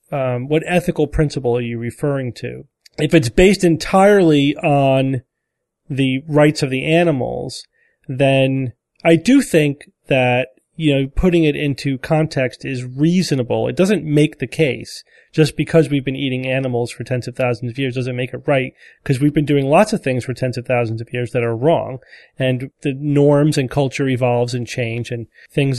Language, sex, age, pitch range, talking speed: English, male, 30-49, 125-155 Hz, 180 wpm